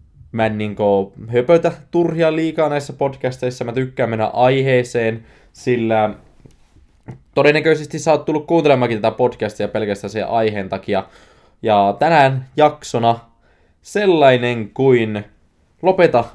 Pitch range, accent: 100-135 Hz, native